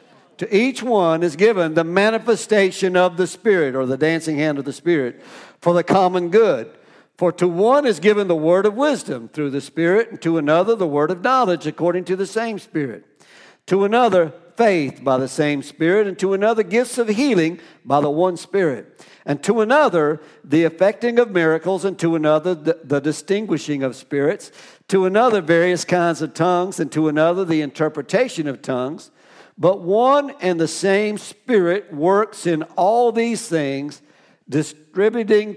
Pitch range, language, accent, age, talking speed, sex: 160-215 Hz, English, American, 60-79, 170 wpm, male